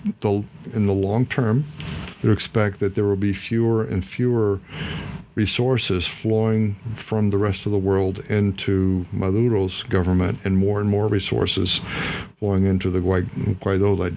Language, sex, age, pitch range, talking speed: English, male, 50-69, 95-105 Hz, 145 wpm